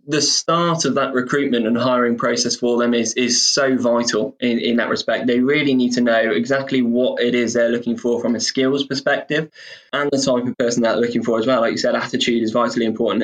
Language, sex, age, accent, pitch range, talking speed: English, male, 20-39, British, 120-135 Hz, 235 wpm